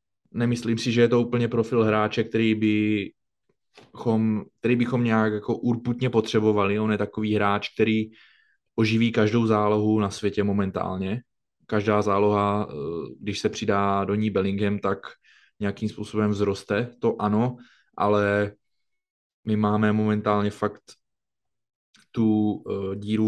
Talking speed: 125 wpm